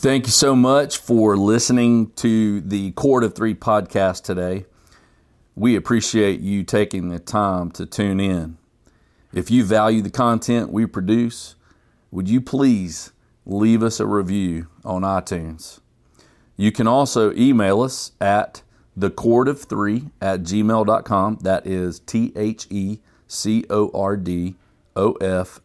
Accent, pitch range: American, 90-115 Hz